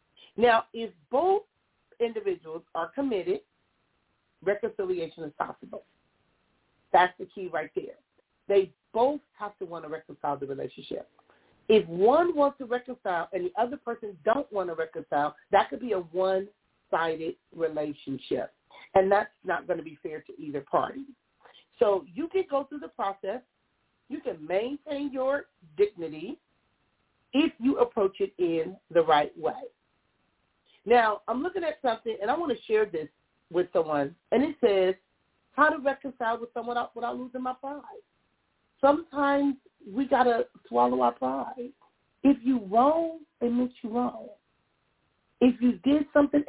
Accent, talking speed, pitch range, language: American, 150 wpm, 185-280 Hz, English